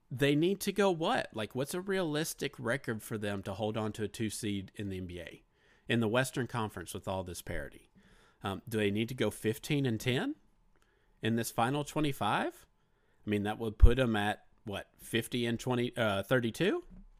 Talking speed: 195 wpm